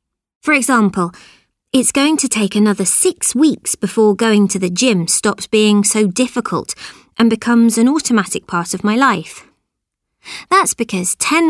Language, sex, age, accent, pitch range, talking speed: Portuguese, female, 20-39, British, 195-260 Hz, 150 wpm